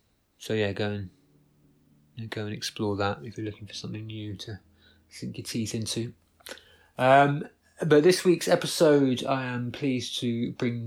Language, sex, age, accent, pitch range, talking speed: English, male, 30-49, British, 105-120 Hz, 155 wpm